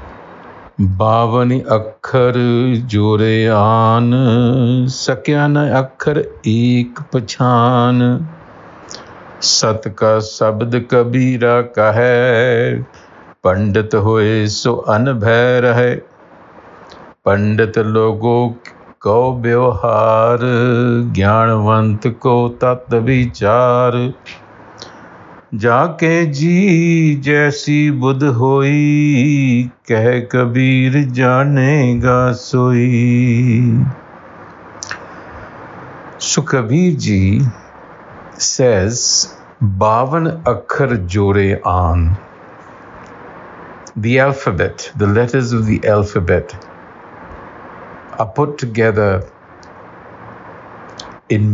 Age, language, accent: 60-79, English, Indian